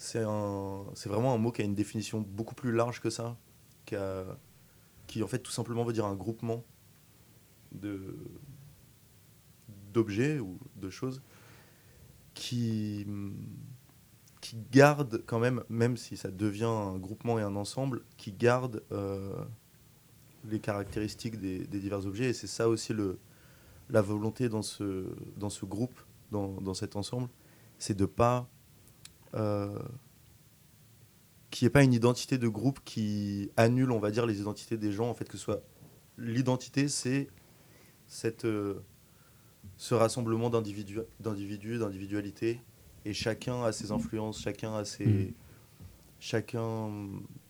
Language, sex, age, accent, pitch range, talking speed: French, male, 20-39, French, 105-125 Hz, 145 wpm